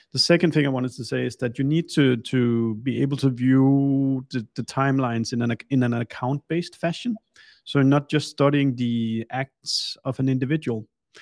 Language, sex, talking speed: English, male, 180 wpm